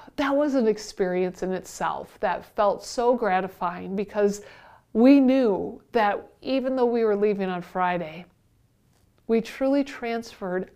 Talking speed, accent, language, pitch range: 135 wpm, American, English, 185-250 Hz